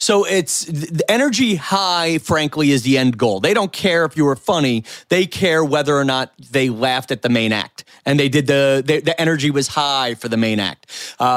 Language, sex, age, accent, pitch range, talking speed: English, male, 30-49, American, 130-170 Hz, 215 wpm